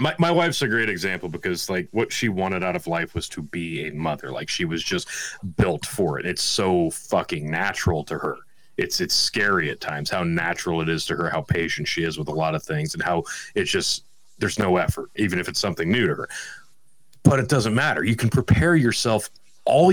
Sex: male